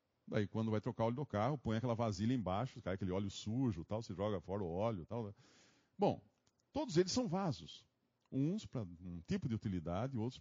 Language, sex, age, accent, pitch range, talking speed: Portuguese, male, 50-69, Brazilian, 100-150 Hz, 200 wpm